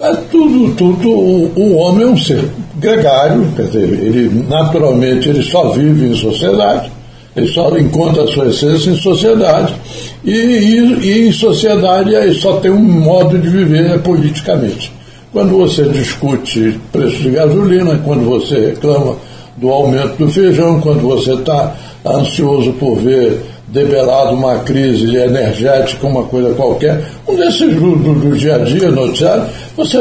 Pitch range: 140-195 Hz